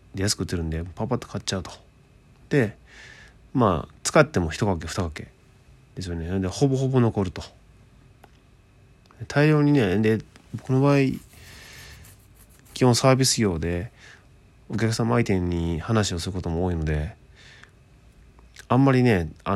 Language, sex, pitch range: Japanese, male, 85-115 Hz